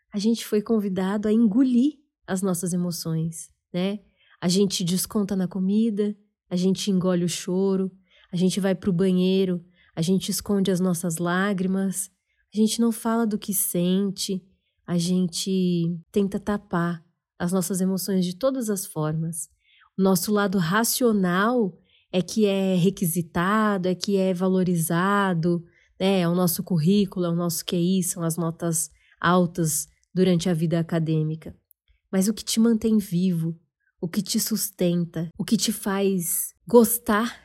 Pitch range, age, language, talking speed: 175-215 Hz, 20-39, Portuguese, 150 wpm